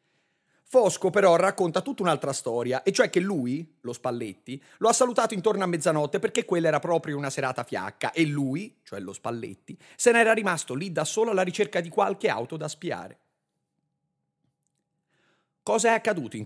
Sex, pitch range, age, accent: male, 130-180 Hz, 30-49, native